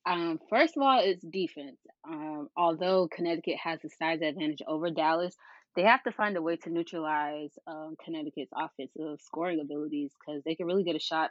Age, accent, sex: 20-39, American, female